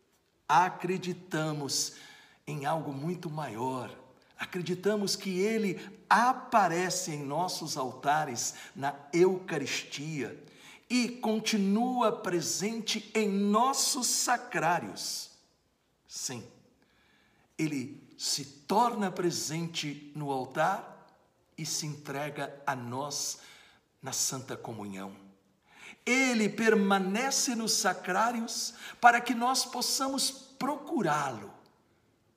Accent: Brazilian